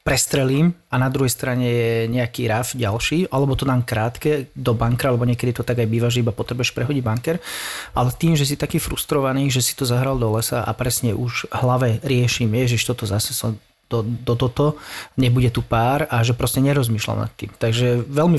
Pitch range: 115-135 Hz